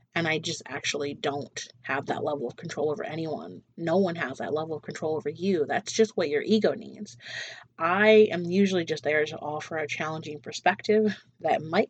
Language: English